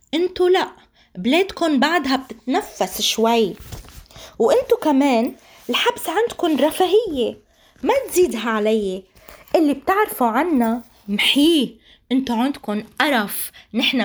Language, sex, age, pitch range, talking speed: Arabic, female, 20-39, 215-285 Hz, 95 wpm